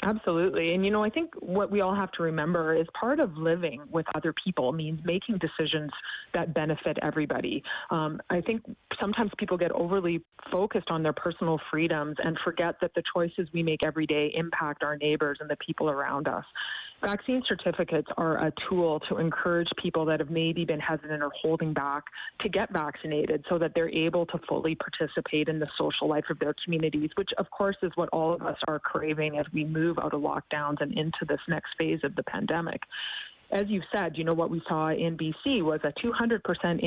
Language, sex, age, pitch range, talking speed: English, female, 30-49, 155-190 Hz, 200 wpm